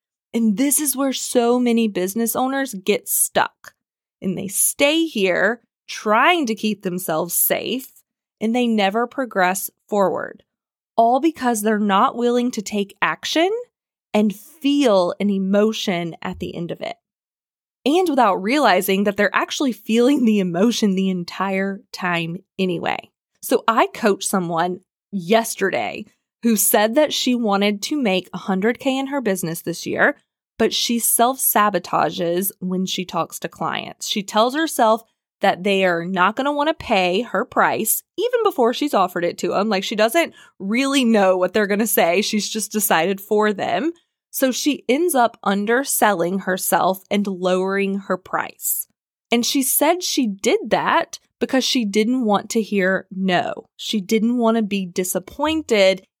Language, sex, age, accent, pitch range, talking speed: English, female, 20-39, American, 190-245 Hz, 150 wpm